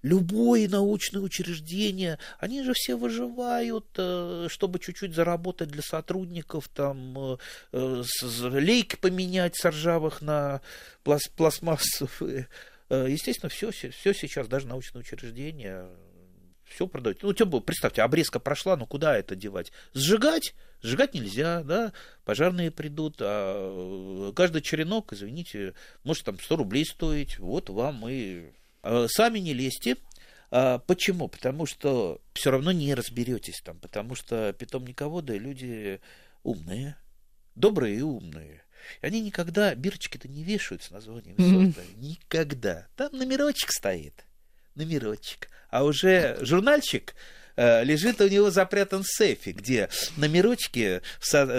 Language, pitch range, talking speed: Russian, 120-180 Hz, 110 wpm